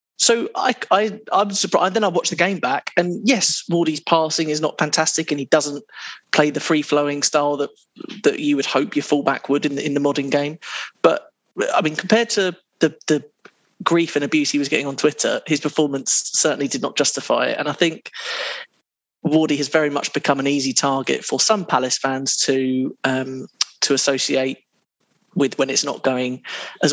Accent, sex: British, male